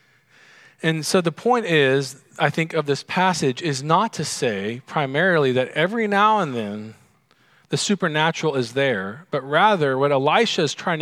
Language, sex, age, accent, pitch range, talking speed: English, male, 40-59, American, 140-180 Hz, 165 wpm